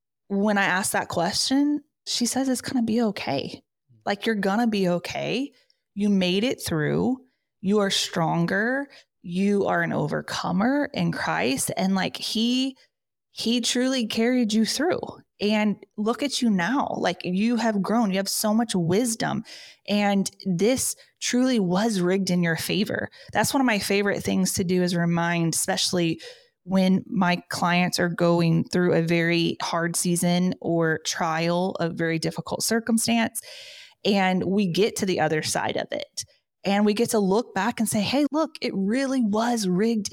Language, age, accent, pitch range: English, 20-39, American, 180-235 Hz